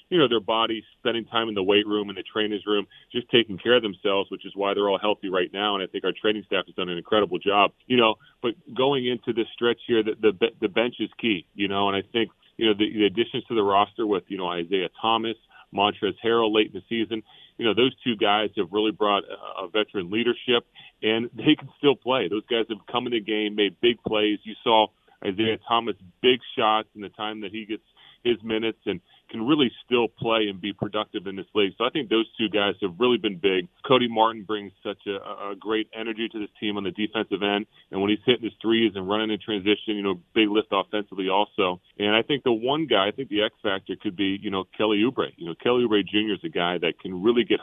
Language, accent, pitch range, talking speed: English, American, 100-115 Hz, 250 wpm